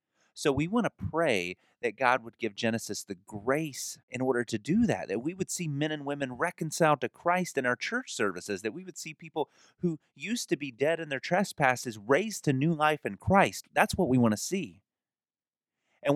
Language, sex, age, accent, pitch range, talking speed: English, male, 30-49, American, 110-160 Hz, 210 wpm